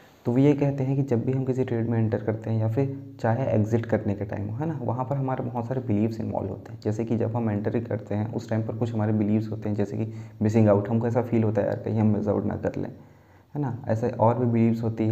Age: 20-39